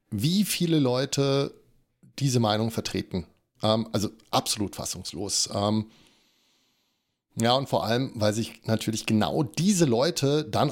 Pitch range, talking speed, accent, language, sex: 105-130 Hz, 110 wpm, German, German, male